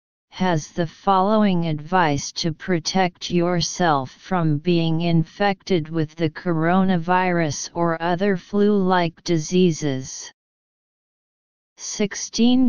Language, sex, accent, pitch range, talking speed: English, female, American, 160-190 Hz, 85 wpm